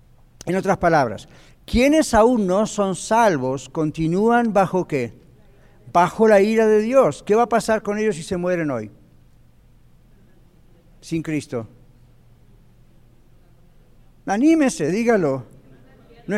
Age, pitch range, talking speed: 60-79, 150-210 Hz, 115 wpm